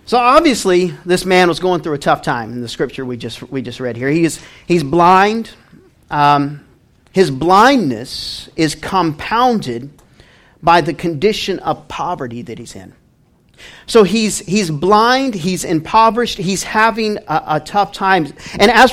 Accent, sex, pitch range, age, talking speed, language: American, male, 165-225 Hz, 40-59, 160 wpm, English